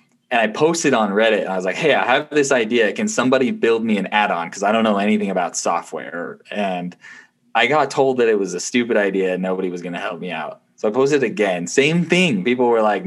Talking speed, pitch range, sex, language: 250 wpm, 95-135 Hz, male, English